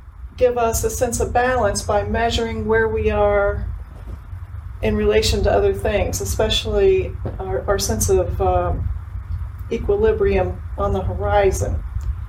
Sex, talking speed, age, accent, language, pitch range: female, 125 wpm, 40-59, American, English, 85-130 Hz